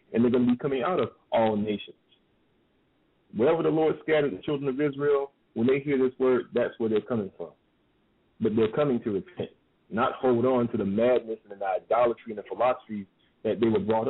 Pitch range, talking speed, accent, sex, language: 110-150 Hz, 210 wpm, American, male, English